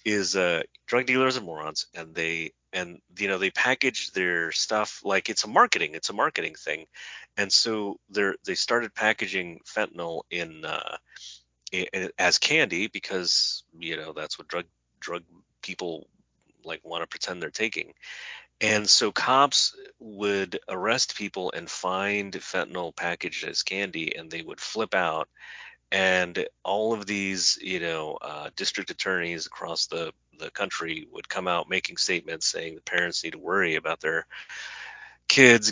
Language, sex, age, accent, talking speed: English, male, 30-49, American, 155 wpm